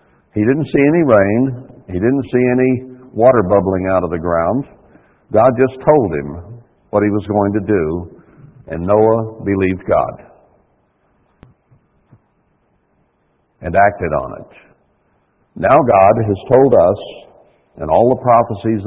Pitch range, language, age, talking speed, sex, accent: 95-120 Hz, English, 60-79, 135 wpm, male, American